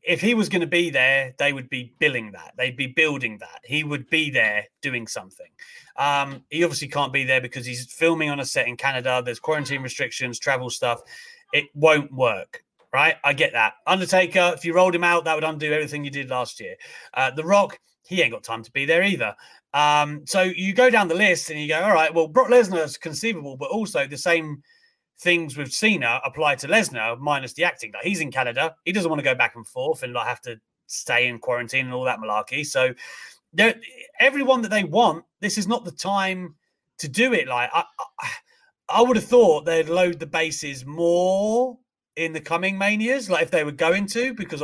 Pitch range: 140-200 Hz